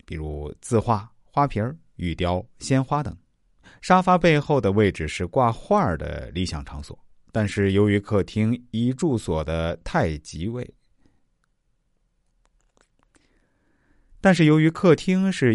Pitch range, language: 85-135 Hz, Chinese